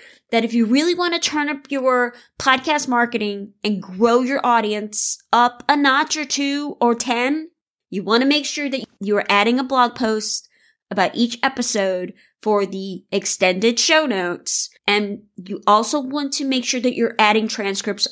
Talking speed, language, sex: 175 wpm, English, female